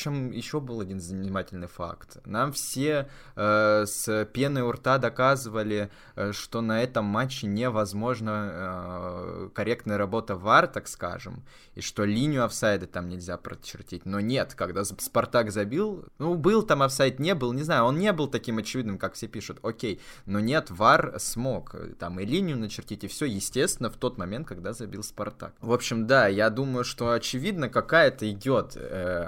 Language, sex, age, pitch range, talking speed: Russian, male, 20-39, 100-130 Hz, 165 wpm